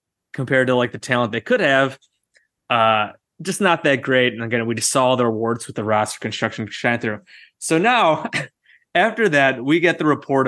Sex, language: male, English